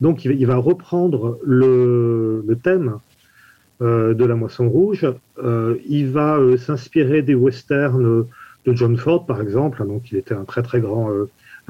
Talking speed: 165 wpm